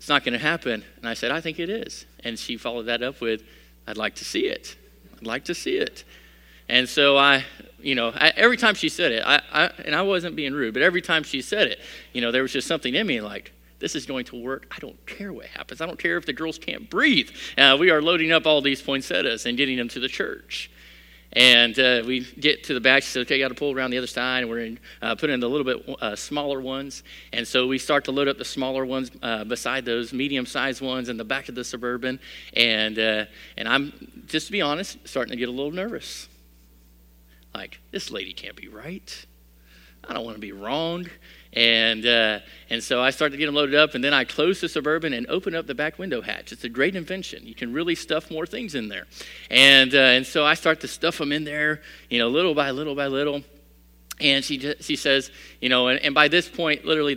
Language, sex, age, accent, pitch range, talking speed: English, male, 40-59, American, 115-150 Hz, 250 wpm